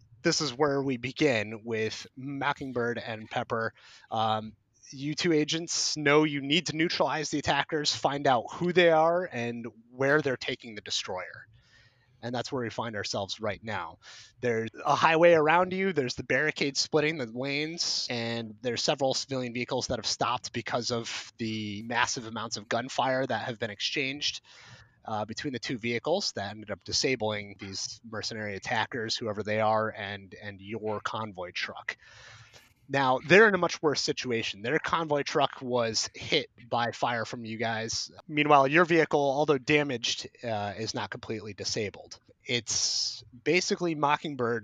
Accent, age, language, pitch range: American, 30-49, English, 110-145 Hz